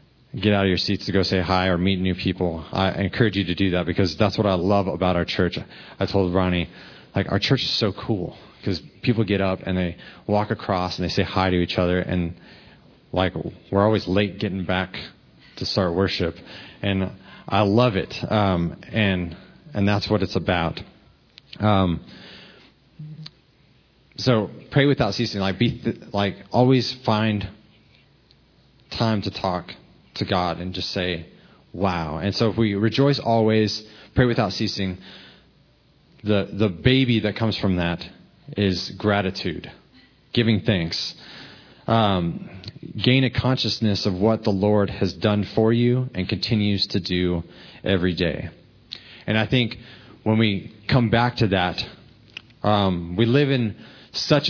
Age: 30-49